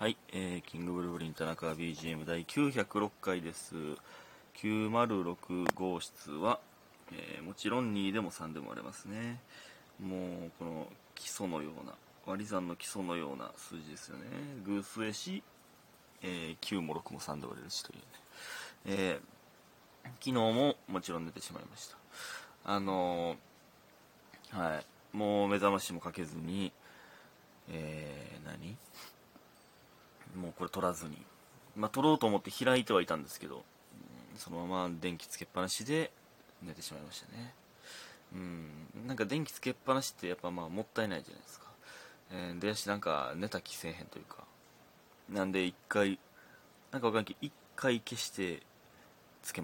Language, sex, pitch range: Japanese, male, 85-110 Hz